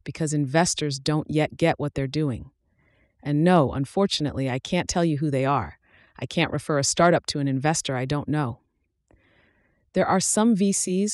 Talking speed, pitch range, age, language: 180 wpm, 135-160 Hz, 30-49, English